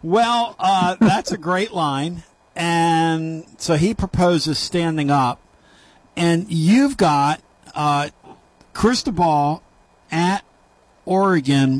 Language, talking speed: English, 95 wpm